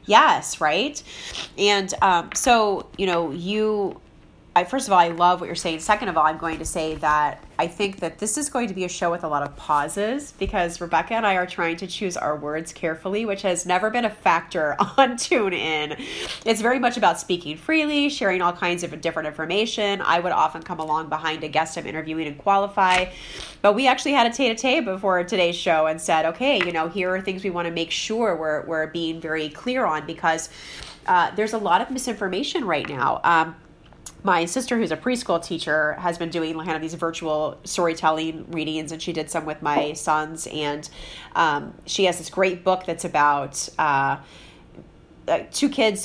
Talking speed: 200 wpm